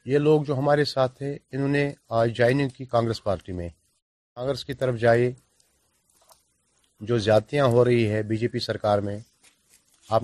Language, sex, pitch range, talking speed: Urdu, male, 105-140 Hz, 175 wpm